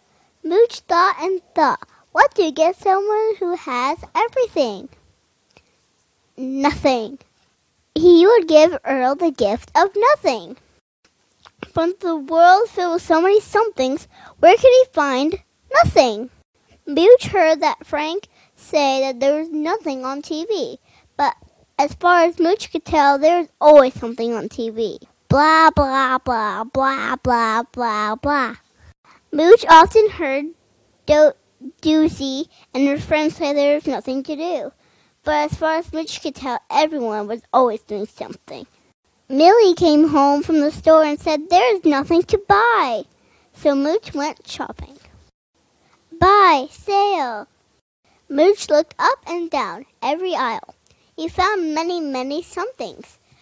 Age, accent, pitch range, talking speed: 20-39, American, 275-355 Hz, 135 wpm